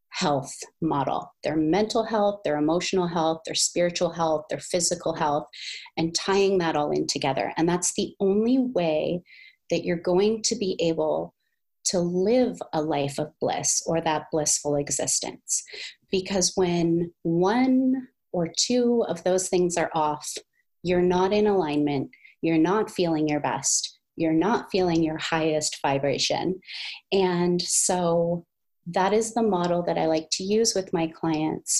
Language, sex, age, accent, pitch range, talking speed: English, female, 30-49, American, 165-205 Hz, 150 wpm